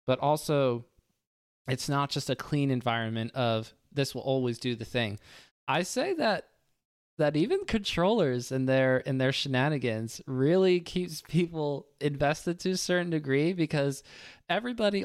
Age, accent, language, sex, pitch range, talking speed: 20-39, American, English, male, 120-140 Hz, 145 wpm